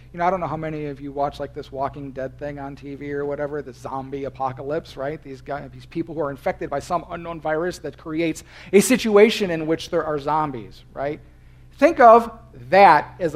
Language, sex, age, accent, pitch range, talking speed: English, male, 50-69, American, 125-165 Hz, 205 wpm